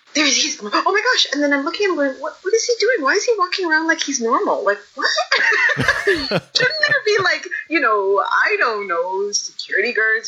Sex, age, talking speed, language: female, 30-49, 220 wpm, English